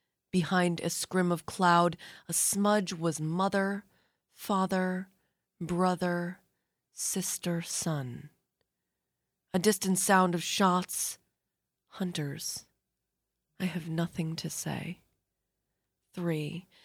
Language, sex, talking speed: English, female, 90 wpm